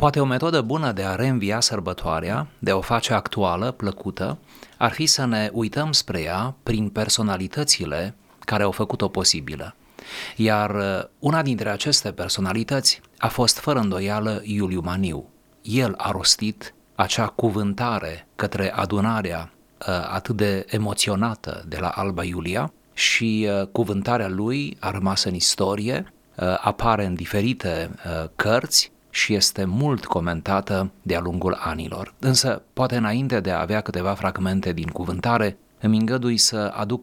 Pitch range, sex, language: 95-120 Hz, male, Romanian